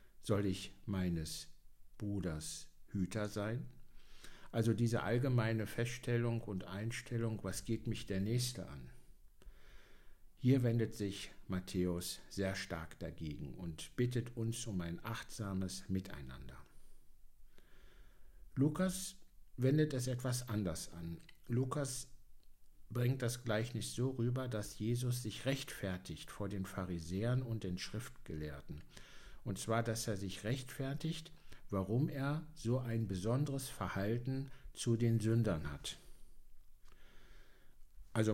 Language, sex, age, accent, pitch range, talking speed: German, male, 60-79, German, 95-120 Hz, 110 wpm